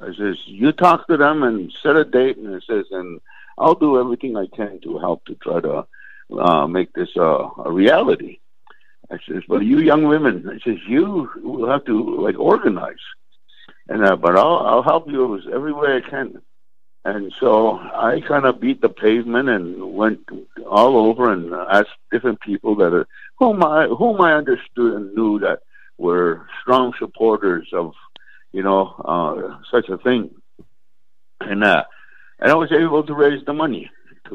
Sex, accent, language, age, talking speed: male, American, English, 60-79, 180 wpm